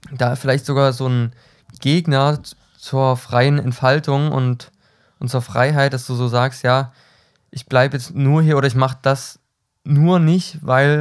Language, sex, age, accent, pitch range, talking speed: German, male, 20-39, German, 125-145 Hz, 165 wpm